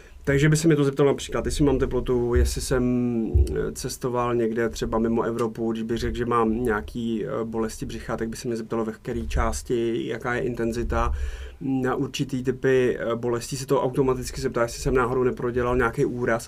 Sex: male